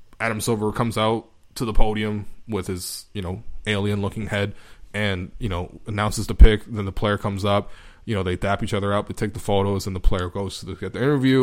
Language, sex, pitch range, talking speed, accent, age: English, male, 100-115 Hz, 225 wpm, American, 20-39